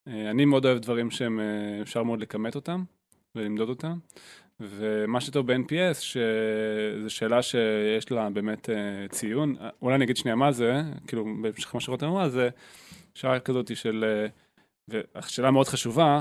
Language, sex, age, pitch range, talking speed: Hebrew, male, 20-39, 115-150 Hz, 135 wpm